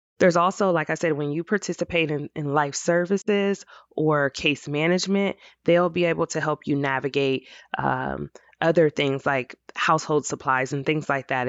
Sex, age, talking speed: female, 20-39, 165 wpm